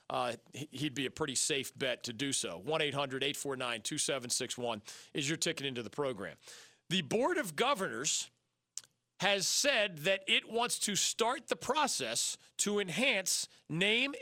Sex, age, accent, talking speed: male, 40-59, American, 140 wpm